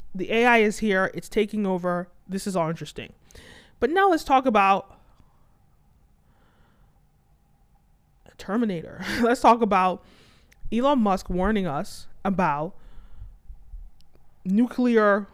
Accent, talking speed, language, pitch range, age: American, 100 wpm, English, 180-225 Hz, 20-39